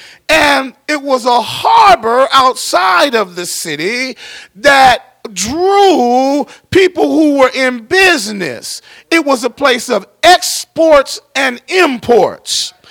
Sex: male